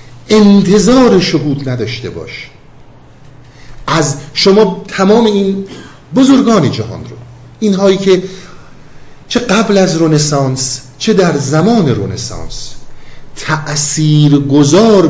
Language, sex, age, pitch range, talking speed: Persian, male, 50-69, 120-175 Hz, 90 wpm